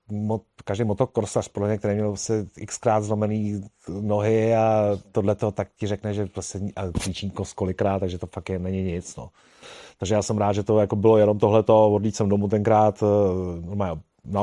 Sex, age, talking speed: male, 30-49, 170 wpm